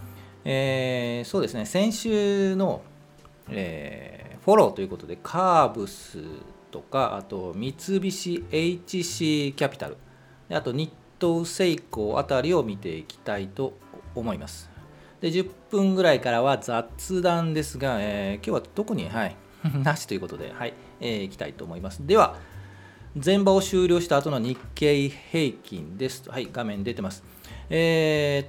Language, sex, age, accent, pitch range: Japanese, male, 40-59, native, 105-170 Hz